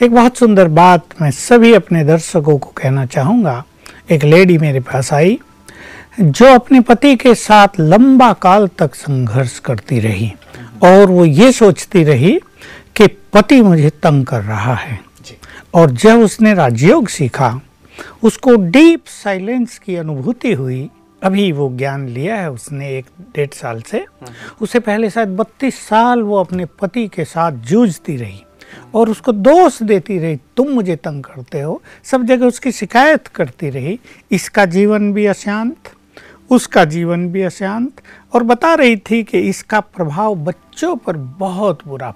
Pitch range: 155-225 Hz